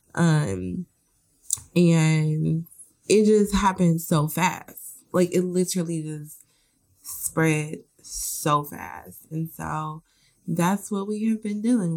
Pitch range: 155-175 Hz